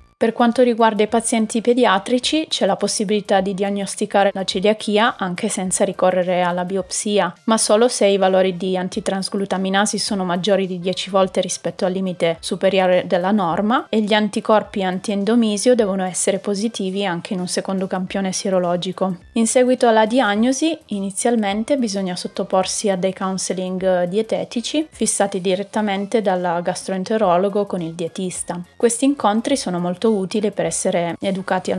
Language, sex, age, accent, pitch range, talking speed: Italian, female, 20-39, native, 185-215 Hz, 145 wpm